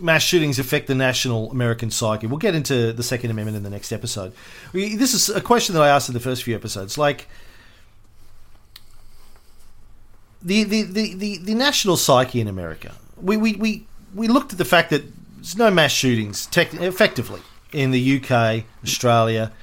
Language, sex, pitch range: English, male, 105-140 Hz